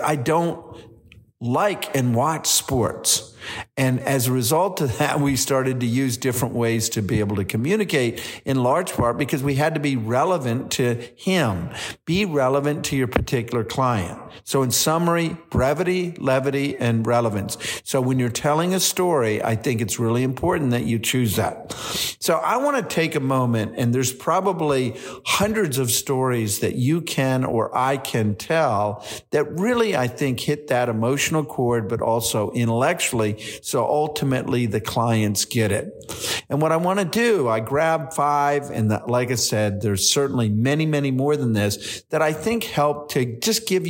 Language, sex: English, male